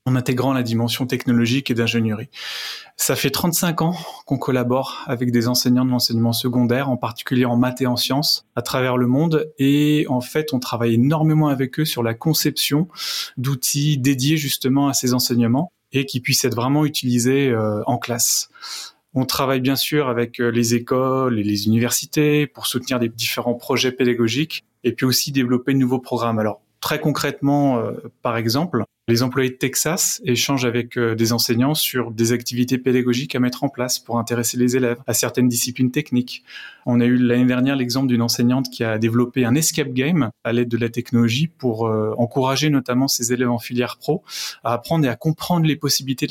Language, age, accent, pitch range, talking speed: French, 20-39, French, 120-140 Hz, 185 wpm